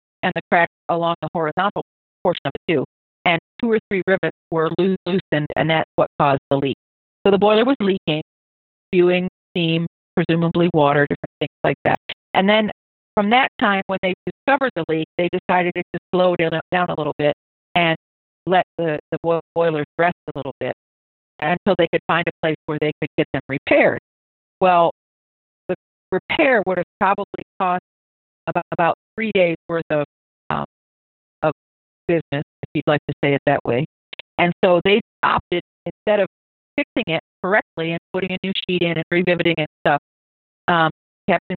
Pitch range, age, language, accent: 150-185 Hz, 40-59, English, American